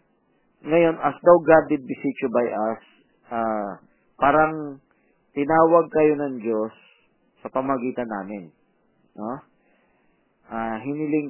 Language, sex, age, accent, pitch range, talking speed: Filipino, male, 40-59, native, 120-155 Hz, 105 wpm